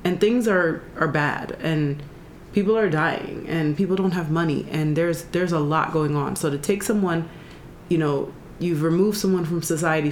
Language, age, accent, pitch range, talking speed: English, 30-49, American, 150-180 Hz, 190 wpm